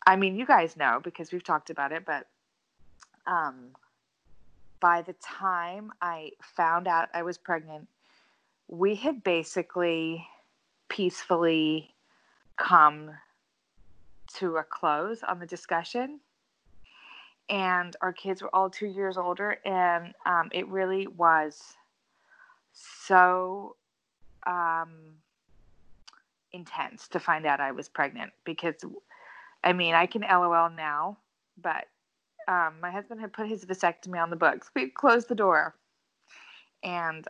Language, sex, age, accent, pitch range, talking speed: English, female, 20-39, American, 160-190 Hz, 125 wpm